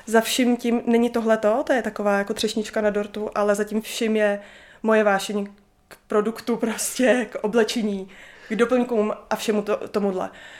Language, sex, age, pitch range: Czech, female, 20-39, 210-245 Hz